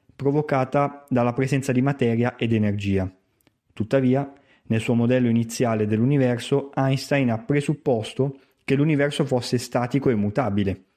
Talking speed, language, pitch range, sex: 120 wpm, Italian, 110-135 Hz, male